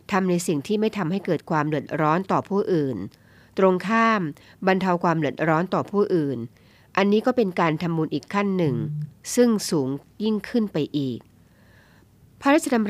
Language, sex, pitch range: Thai, female, 145-195 Hz